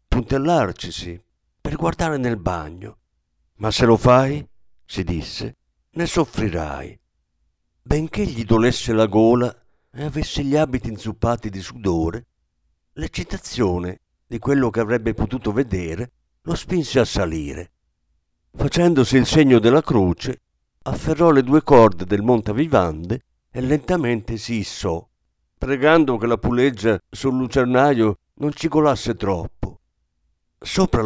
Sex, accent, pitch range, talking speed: male, native, 85-130 Hz, 120 wpm